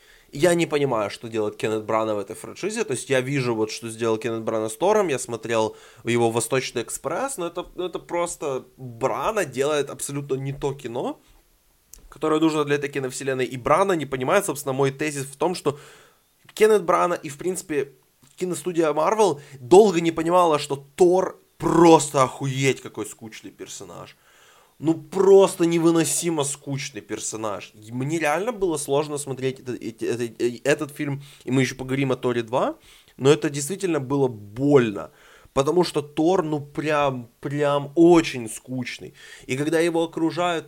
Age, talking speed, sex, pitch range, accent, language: 20-39, 155 wpm, male, 130-165 Hz, native, Ukrainian